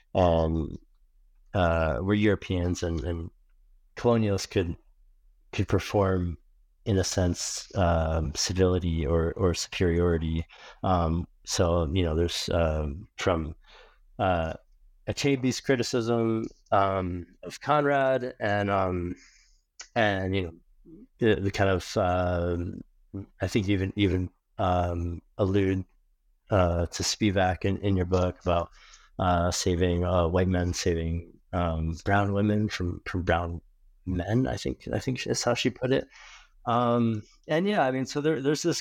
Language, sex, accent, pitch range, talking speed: English, male, American, 90-105 Hz, 130 wpm